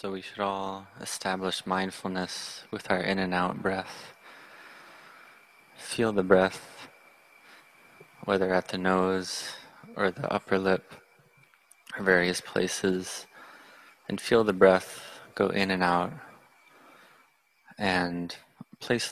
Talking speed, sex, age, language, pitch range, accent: 105 wpm, male, 20-39, English, 90-95 Hz, American